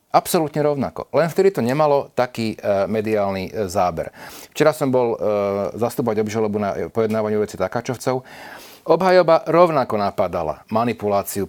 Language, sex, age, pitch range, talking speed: Slovak, male, 40-59, 100-120 Hz, 130 wpm